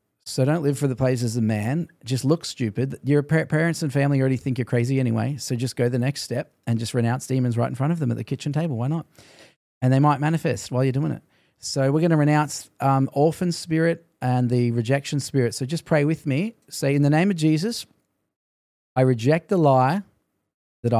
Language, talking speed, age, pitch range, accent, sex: English, 225 wpm, 40-59, 125-155 Hz, Australian, male